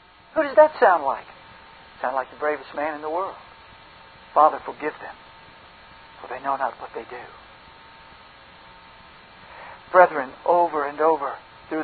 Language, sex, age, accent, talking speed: English, male, 50-69, American, 140 wpm